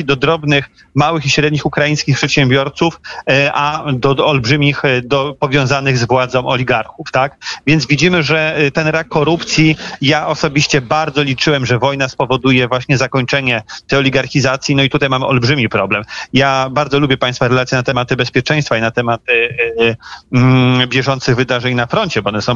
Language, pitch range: Polish, 125-145 Hz